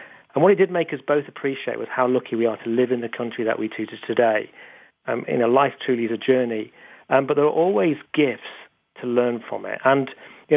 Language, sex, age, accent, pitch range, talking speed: English, male, 40-59, British, 120-145 Hz, 240 wpm